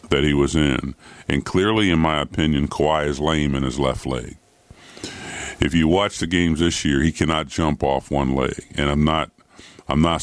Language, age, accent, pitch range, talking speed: English, 50-69, American, 70-85 Hz, 200 wpm